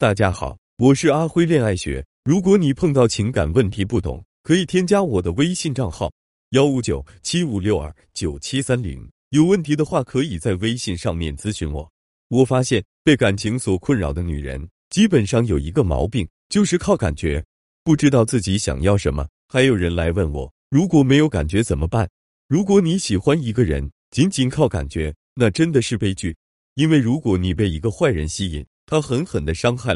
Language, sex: Chinese, male